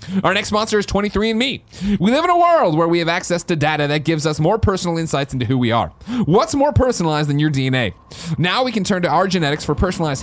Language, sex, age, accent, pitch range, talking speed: English, male, 30-49, American, 125-170 Hz, 240 wpm